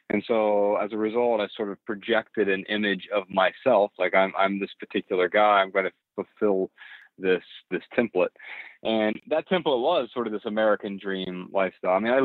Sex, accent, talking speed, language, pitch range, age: male, American, 190 wpm, English, 100-125 Hz, 40-59